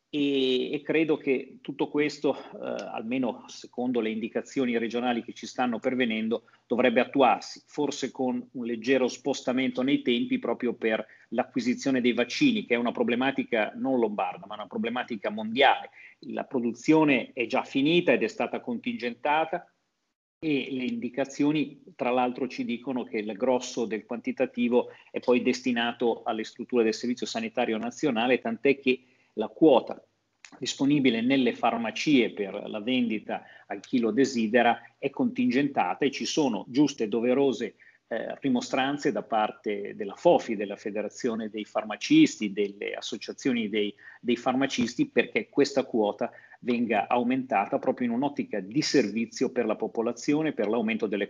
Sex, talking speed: male, 145 wpm